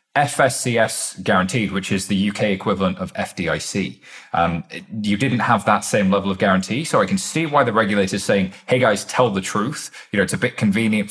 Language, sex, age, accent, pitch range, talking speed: English, male, 20-39, British, 95-110 Hz, 210 wpm